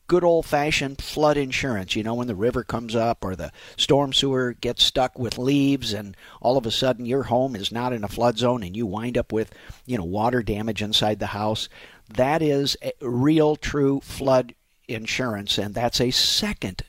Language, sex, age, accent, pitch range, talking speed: English, male, 50-69, American, 110-145 Hz, 190 wpm